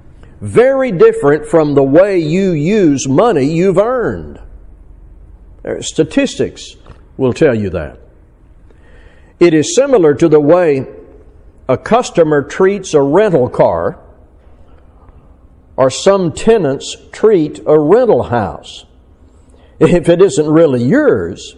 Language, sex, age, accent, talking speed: English, male, 60-79, American, 110 wpm